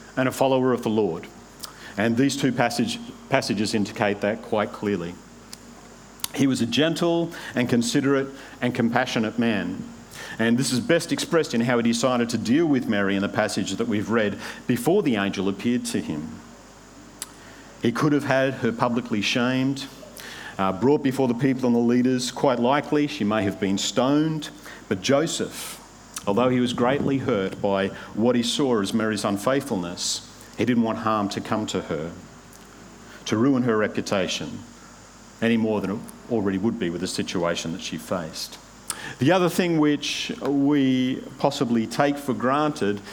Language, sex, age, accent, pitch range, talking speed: English, male, 50-69, Australian, 110-140 Hz, 165 wpm